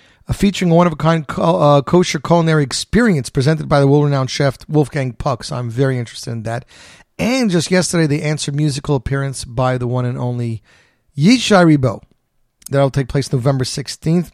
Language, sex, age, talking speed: English, male, 30-49, 175 wpm